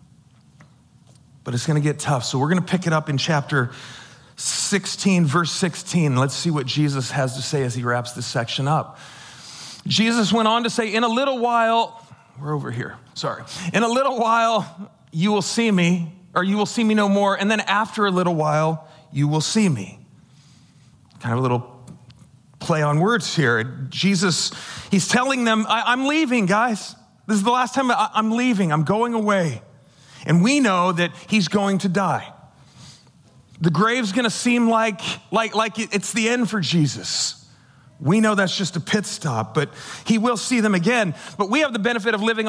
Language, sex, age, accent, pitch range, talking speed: English, male, 40-59, American, 145-220 Hz, 190 wpm